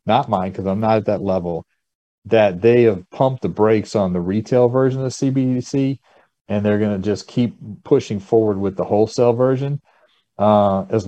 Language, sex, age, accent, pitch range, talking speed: English, male, 40-59, American, 100-125 Hz, 185 wpm